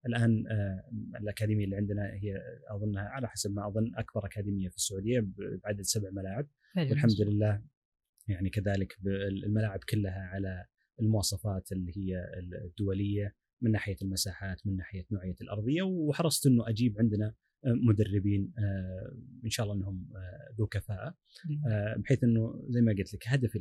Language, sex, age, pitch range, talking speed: Arabic, male, 30-49, 100-120 Hz, 135 wpm